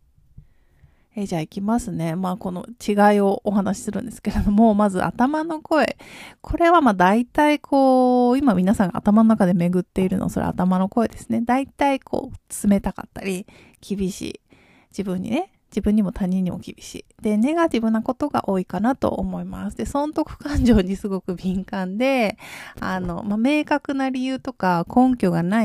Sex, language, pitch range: female, Japanese, 190-255 Hz